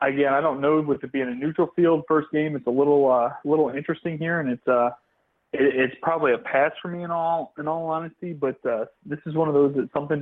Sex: male